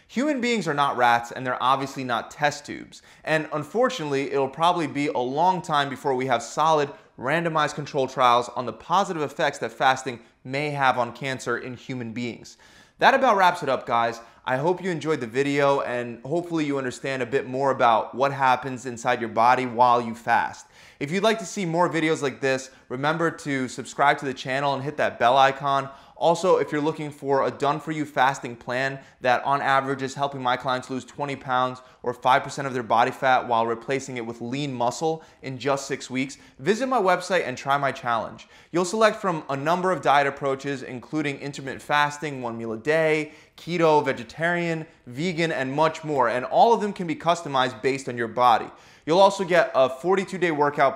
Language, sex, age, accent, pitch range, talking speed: English, male, 20-39, American, 125-155 Hz, 195 wpm